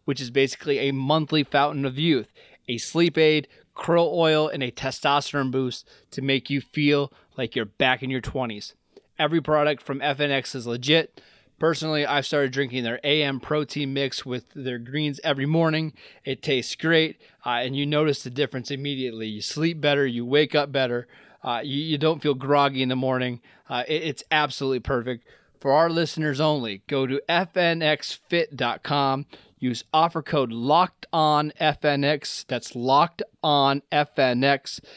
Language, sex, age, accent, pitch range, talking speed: English, male, 20-39, American, 130-150 Hz, 160 wpm